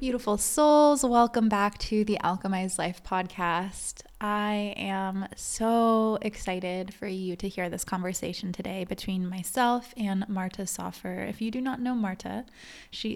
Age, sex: 20-39, female